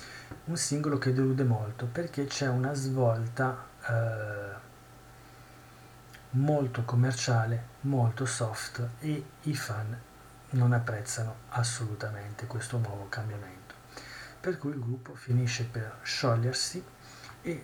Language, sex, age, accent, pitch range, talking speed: Italian, male, 40-59, native, 120-135 Hz, 105 wpm